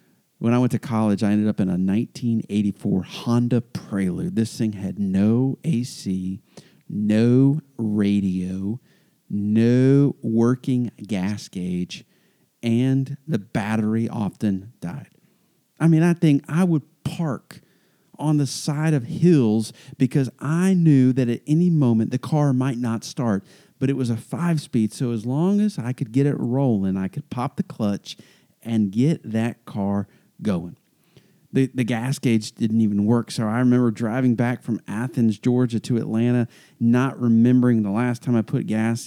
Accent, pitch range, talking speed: American, 105-135 Hz, 155 wpm